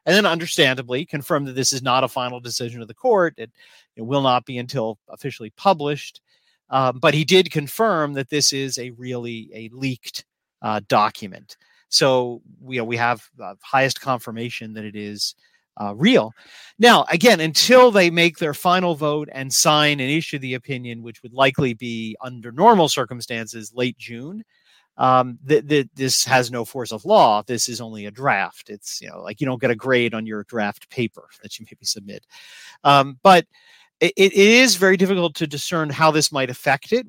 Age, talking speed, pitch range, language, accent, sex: 40-59, 185 wpm, 120-155 Hz, English, American, male